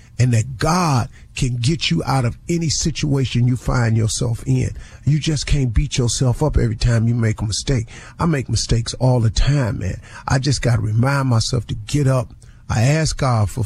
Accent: American